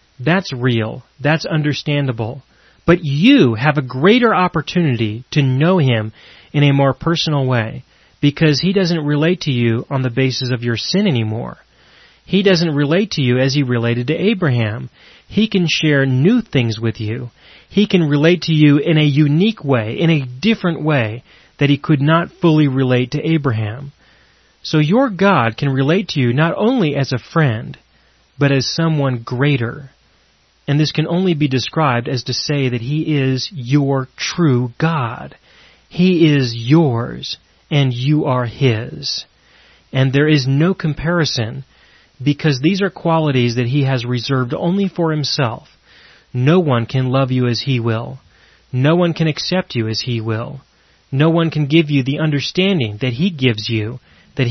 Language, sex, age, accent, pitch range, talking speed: English, male, 30-49, American, 125-160 Hz, 165 wpm